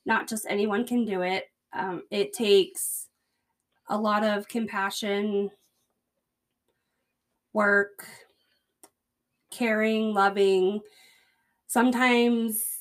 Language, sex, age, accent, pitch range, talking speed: English, female, 20-39, American, 190-225 Hz, 80 wpm